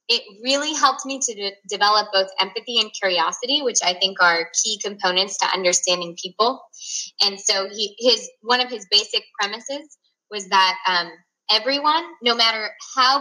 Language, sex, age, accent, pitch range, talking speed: English, female, 20-39, American, 195-255 Hz, 165 wpm